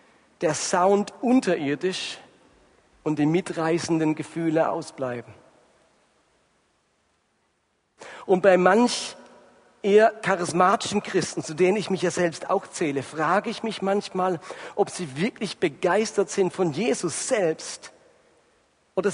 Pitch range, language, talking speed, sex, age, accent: 155-195 Hz, German, 110 wpm, male, 50-69, German